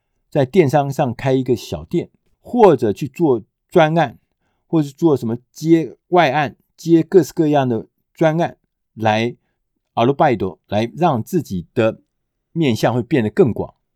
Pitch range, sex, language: 110-160 Hz, male, Chinese